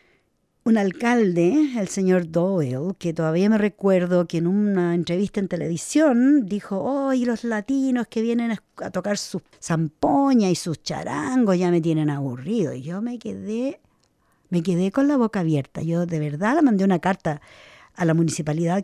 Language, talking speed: English, 170 wpm